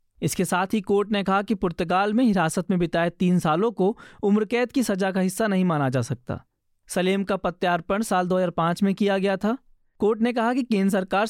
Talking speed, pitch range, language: 205 wpm, 170-210 Hz, Hindi